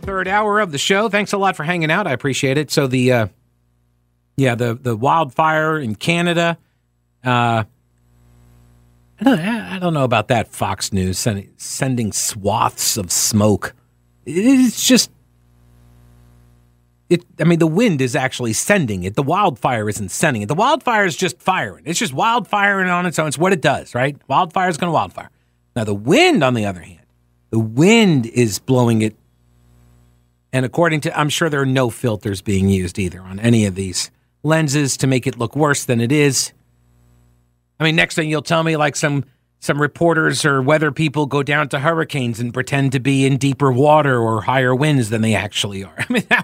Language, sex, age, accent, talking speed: English, male, 40-59, American, 190 wpm